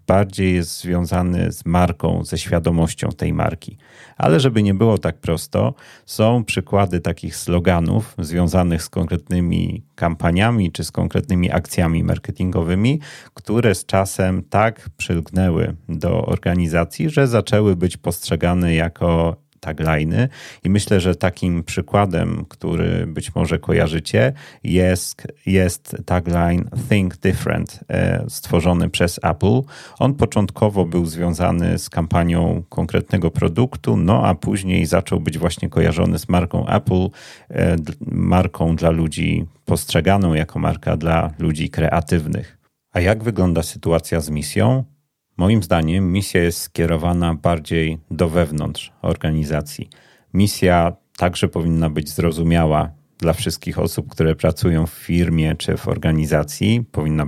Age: 30-49